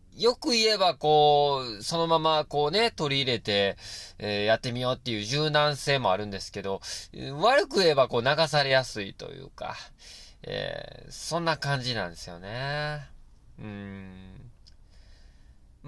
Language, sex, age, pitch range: Japanese, male, 20-39, 100-150 Hz